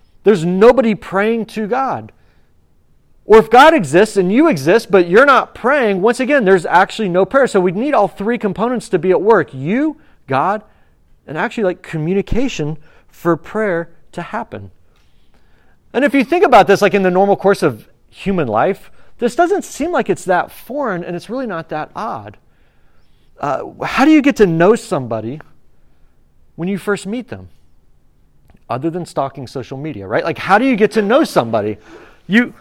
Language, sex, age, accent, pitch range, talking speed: English, male, 40-59, American, 160-230 Hz, 180 wpm